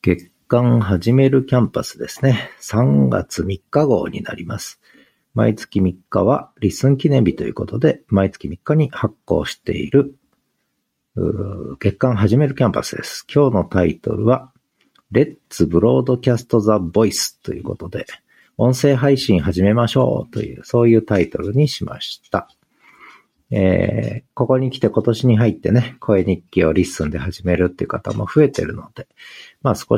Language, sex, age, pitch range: Japanese, male, 50-69, 90-125 Hz